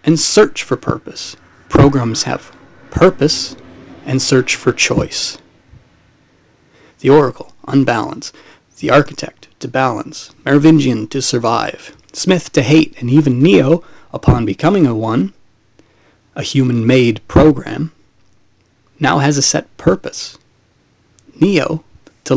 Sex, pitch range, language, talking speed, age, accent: male, 120-150 Hz, English, 115 wpm, 30-49, American